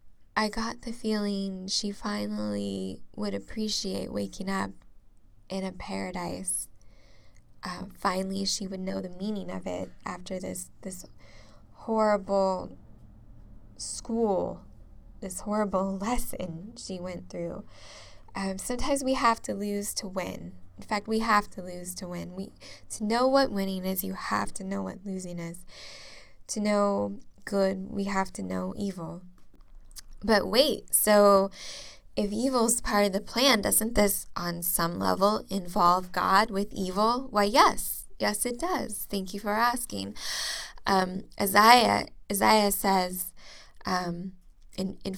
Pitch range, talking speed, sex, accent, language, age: 170-205 Hz, 140 wpm, female, American, English, 10-29